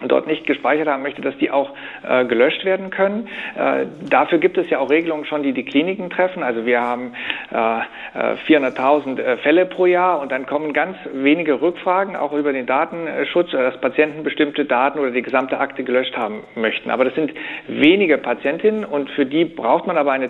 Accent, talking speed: German, 195 wpm